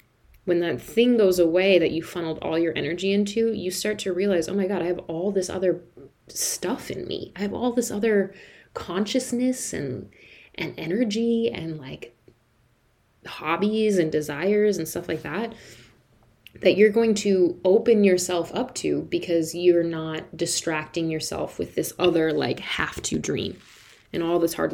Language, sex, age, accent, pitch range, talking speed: English, female, 20-39, American, 160-195 Hz, 165 wpm